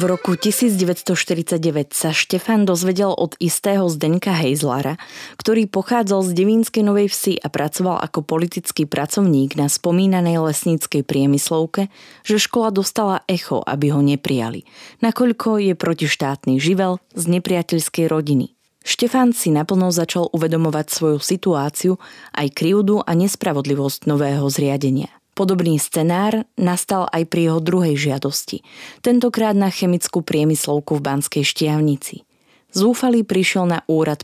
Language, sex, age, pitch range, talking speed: Slovak, female, 20-39, 150-195 Hz, 125 wpm